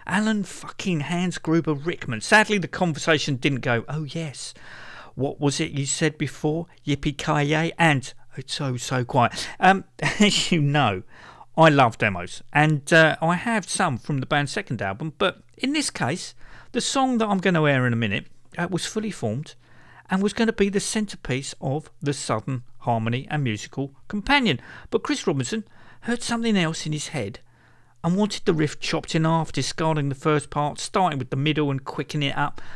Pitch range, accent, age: 125-175 Hz, British, 50-69